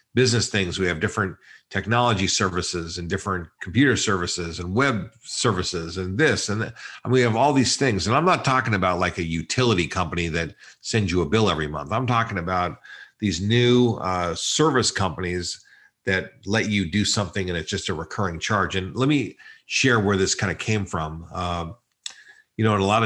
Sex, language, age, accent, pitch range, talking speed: male, English, 50-69, American, 85-105 Hz, 195 wpm